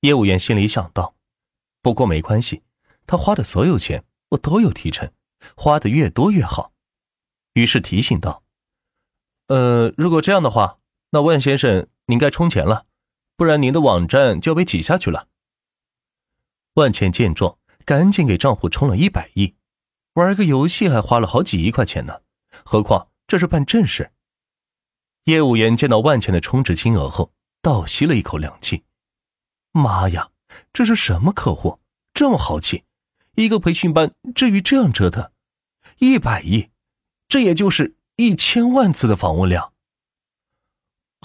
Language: Chinese